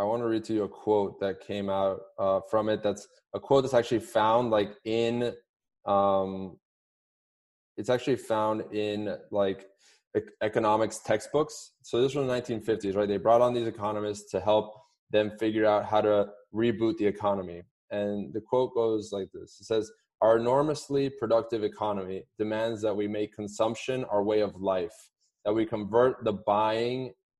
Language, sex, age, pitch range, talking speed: English, male, 20-39, 100-120 Hz, 170 wpm